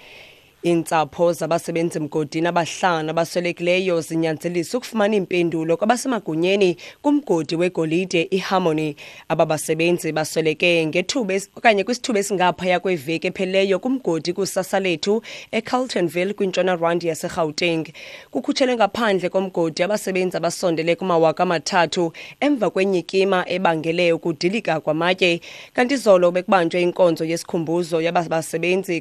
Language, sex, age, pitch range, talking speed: English, female, 20-39, 160-190 Hz, 120 wpm